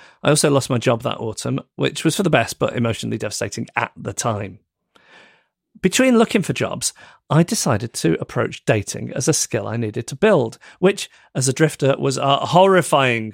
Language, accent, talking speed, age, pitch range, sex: English, British, 185 wpm, 40-59, 115-160 Hz, male